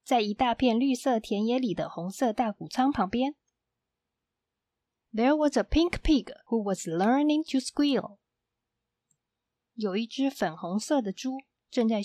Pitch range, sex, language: 205-265 Hz, female, Chinese